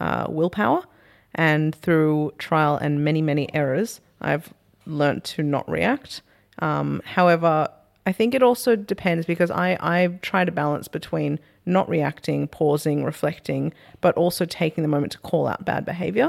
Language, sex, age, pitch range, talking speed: English, female, 30-49, 150-180 Hz, 160 wpm